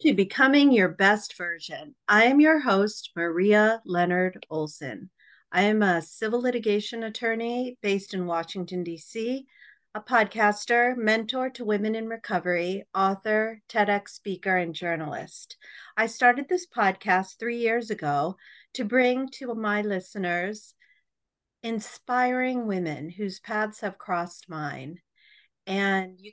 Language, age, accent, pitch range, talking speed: English, 40-59, American, 180-230 Hz, 125 wpm